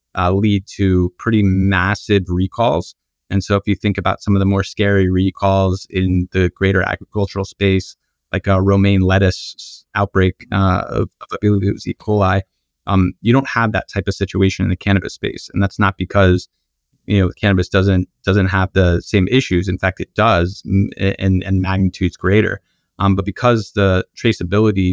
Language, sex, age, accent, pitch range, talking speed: English, male, 30-49, American, 95-100 Hz, 180 wpm